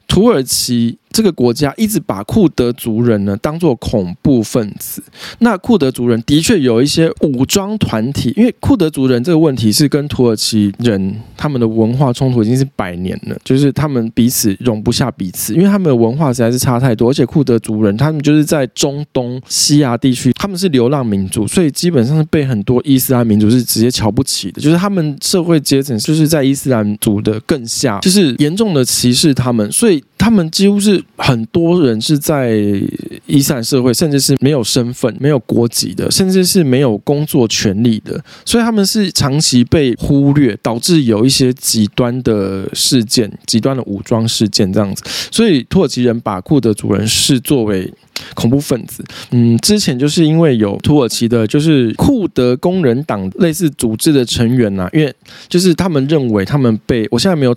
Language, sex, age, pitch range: Chinese, male, 20-39, 115-150 Hz